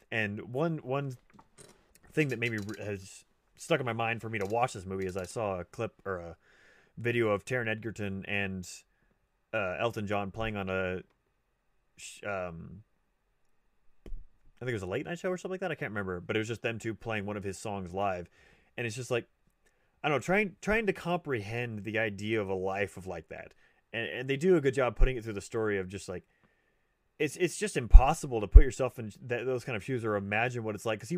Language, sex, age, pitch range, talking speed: English, male, 30-49, 100-130 Hz, 225 wpm